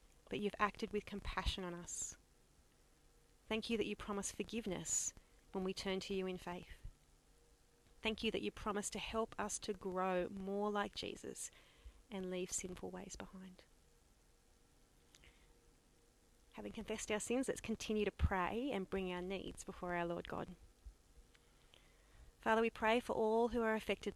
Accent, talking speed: Australian, 155 wpm